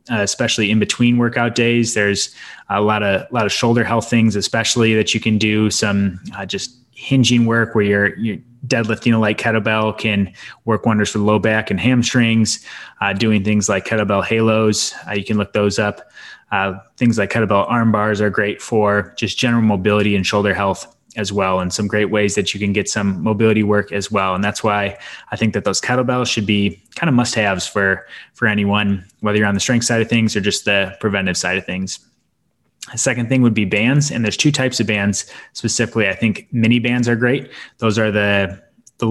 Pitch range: 105-115 Hz